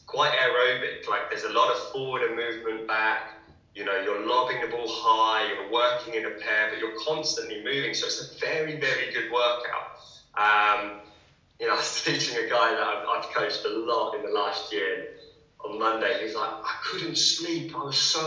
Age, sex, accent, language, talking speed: 20-39, male, British, English, 205 wpm